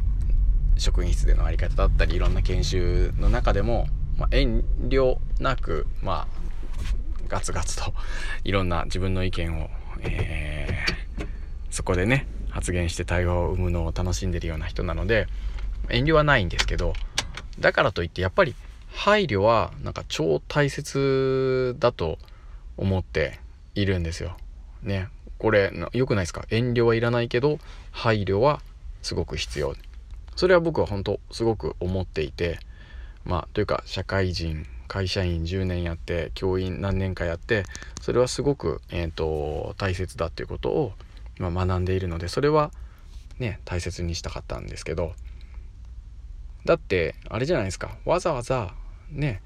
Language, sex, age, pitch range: Japanese, male, 20-39, 85-110 Hz